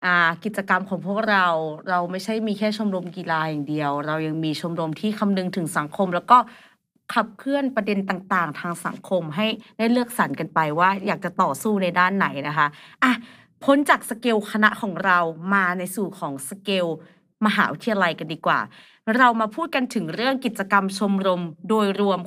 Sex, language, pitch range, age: female, Thai, 175-220 Hz, 30-49